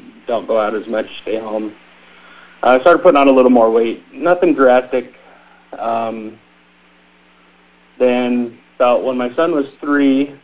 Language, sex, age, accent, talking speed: English, male, 30-49, American, 145 wpm